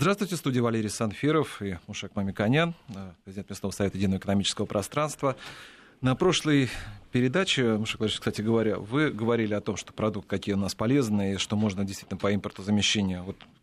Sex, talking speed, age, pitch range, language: male, 165 wpm, 30-49, 105-130 Hz, Russian